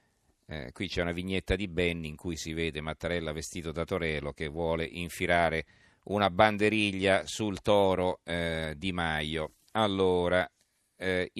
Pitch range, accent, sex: 90-110 Hz, native, male